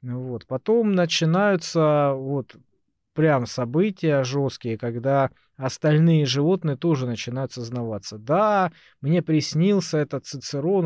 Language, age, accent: Russian, 20-39, native